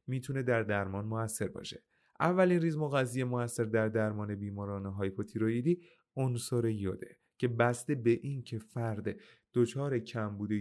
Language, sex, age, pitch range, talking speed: Persian, male, 30-49, 105-135 Hz, 130 wpm